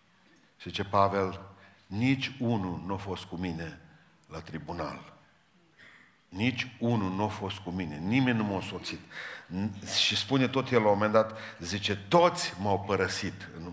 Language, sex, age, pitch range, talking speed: Romanian, male, 50-69, 95-110 Hz, 155 wpm